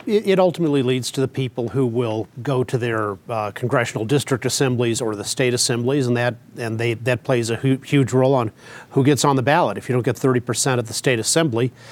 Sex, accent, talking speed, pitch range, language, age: male, American, 220 wpm, 115-135 Hz, English, 40-59